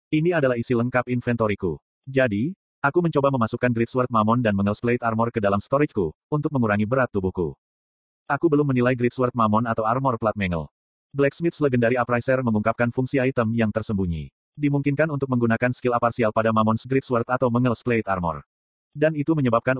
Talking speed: 165 wpm